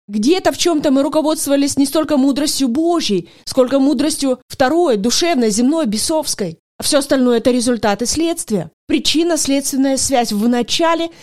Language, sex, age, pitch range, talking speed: Russian, female, 30-49, 240-295 Hz, 140 wpm